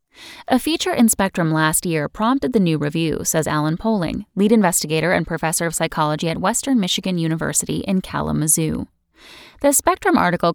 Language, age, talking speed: English, 10-29, 160 wpm